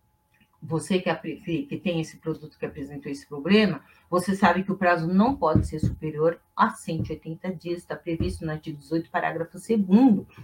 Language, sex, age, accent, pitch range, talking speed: Portuguese, female, 40-59, Brazilian, 175-260 Hz, 160 wpm